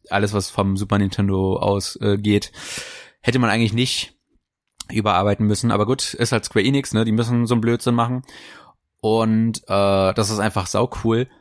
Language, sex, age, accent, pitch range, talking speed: German, male, 20-39, German, 100-125 Hz, 175 wpm